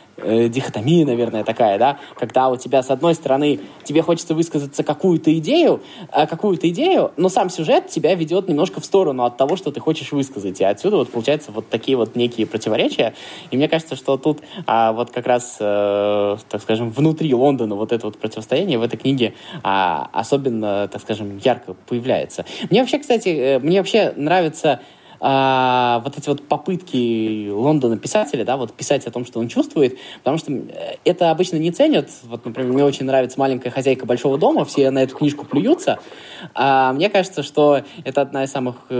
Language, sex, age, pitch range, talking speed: Russian, male, 20-39, 120-155 Hz, 175 wpm